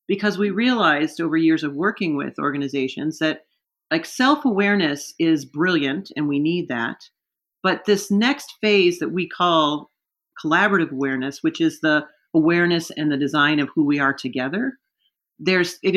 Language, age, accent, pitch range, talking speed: English, 40-59, American, 150-205 Hz, 155 wpm